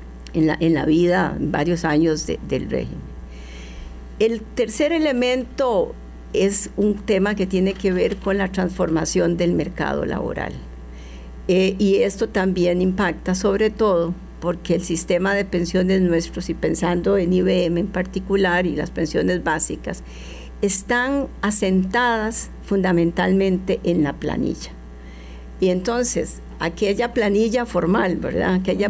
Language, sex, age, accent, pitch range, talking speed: Spanish, female, 50-69, American, 170-200 Hz, 130 wpm